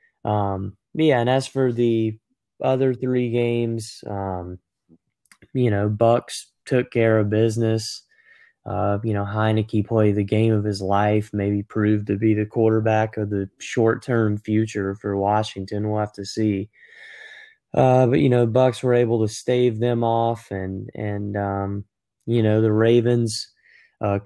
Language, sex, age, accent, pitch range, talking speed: English, male, 20-39, American, 105-115 Hz, 155 wpm